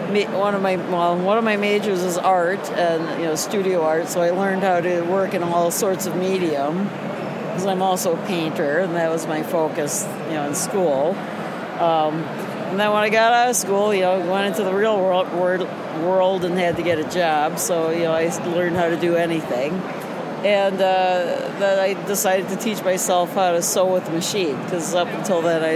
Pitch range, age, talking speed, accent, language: 170-195 Hz, 60-79, 215 wpm, American, English